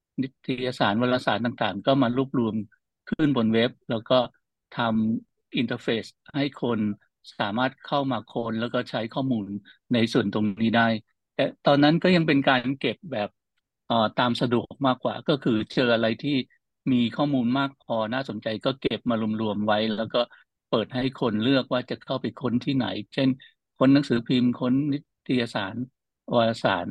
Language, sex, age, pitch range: English, male, 60-79, 110-135 Hz